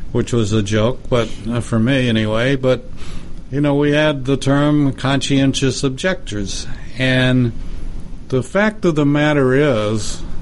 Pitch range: 110-135 Hz